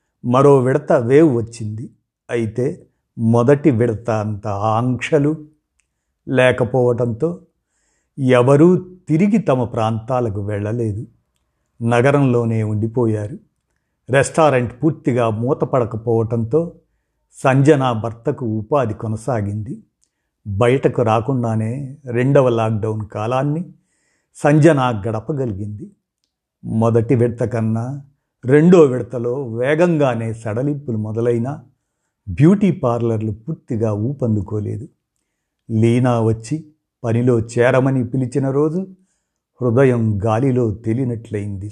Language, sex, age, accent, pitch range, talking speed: Telugu, male, 50-69, native, 110-135 Hz, 75 wpm